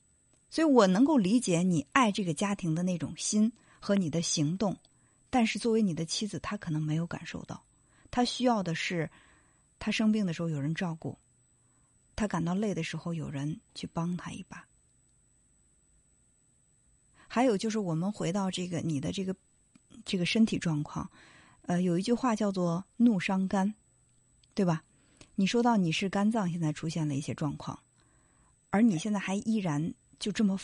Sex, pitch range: female, 160-220 Hz